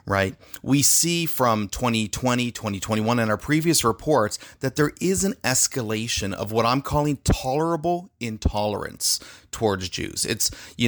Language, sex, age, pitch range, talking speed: English, male, 30-49, 100-130 Hz, 140 wpm